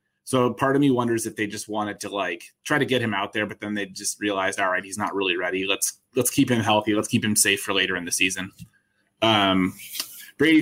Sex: male